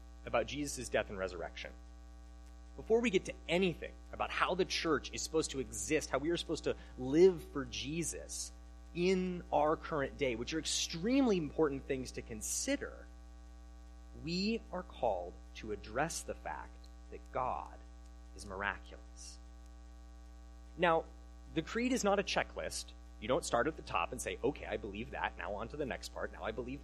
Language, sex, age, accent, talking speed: English, male, 30-49, American, 170 wpm